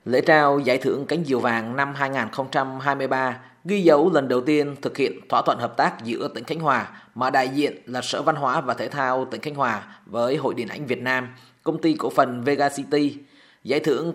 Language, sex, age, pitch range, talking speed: Vietnamese, male, 20-39, 130-160 Hz, 215 wpm